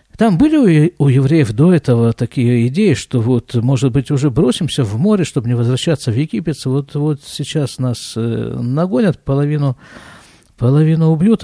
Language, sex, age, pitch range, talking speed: Russian, male, 50-69, 125-175 Hz, 150 wpm